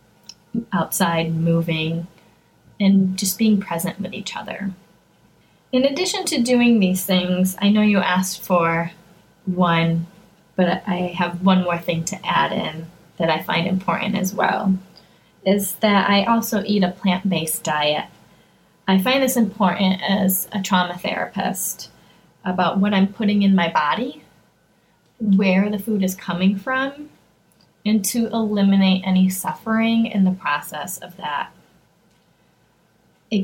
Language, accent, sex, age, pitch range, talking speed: English, American, female, 20-39, 180-210 Hz, 135 wpm